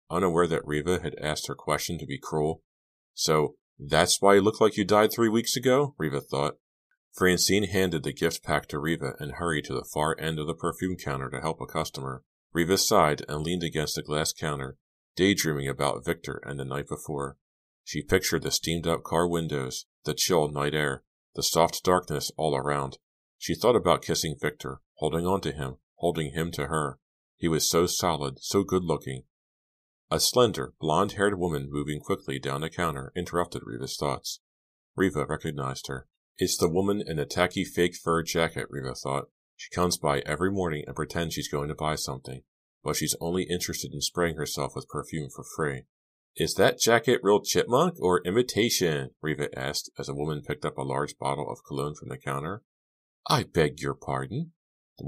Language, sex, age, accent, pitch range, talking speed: English, male, 40-59, American, 70-90 Hz, 185 wpm